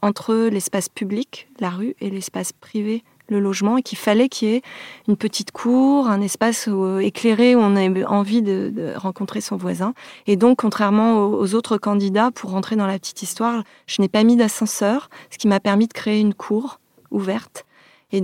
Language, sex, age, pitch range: French, female, 30-49, 195-220 Hz